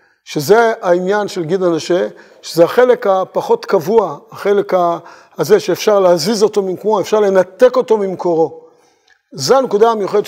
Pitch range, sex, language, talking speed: 190-270 Hz, male, Hebrew, 130 wpm